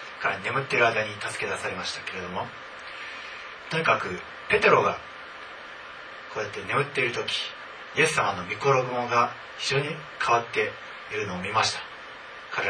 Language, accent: Japanese, native